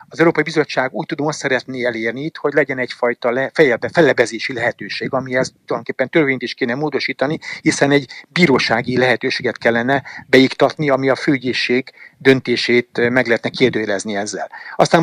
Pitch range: 120-150 Hz